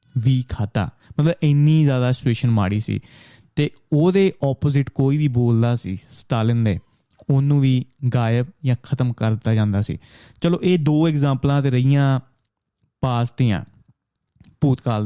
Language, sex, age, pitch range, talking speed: Punjabi, male, 20-39, 120-140 Hz, 130 wpm